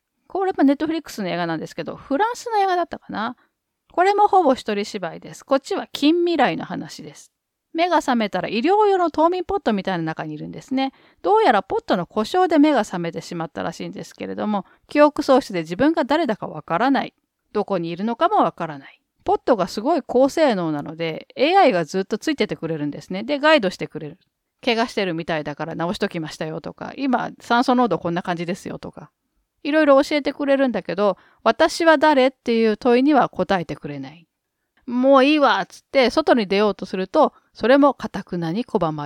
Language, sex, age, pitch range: Japanese, female, 40-59, 185-300 Hz